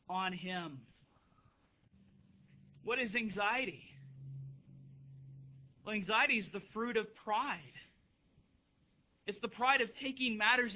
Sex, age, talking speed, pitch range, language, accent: male, 40-59, 100 wpm, 185-250 Hz, English, American